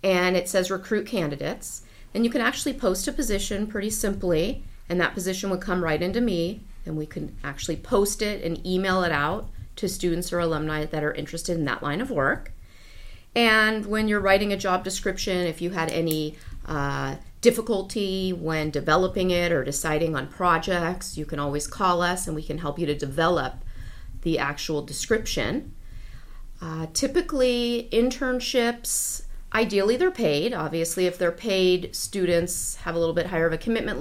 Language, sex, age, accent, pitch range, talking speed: English, female, 40-59, American, 155-195 Hz, 175 wpm